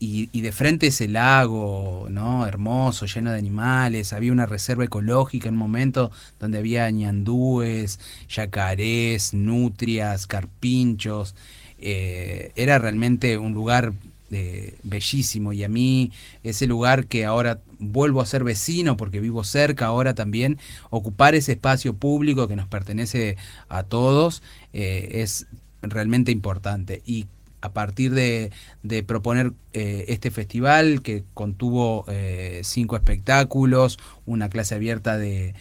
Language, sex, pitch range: Spanish, male, 105-130 Hz